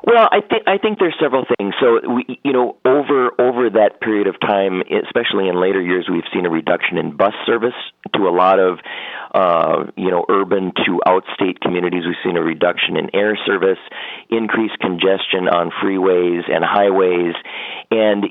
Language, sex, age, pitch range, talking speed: English, male, 40-59, 95-110 Hz, 180 wpm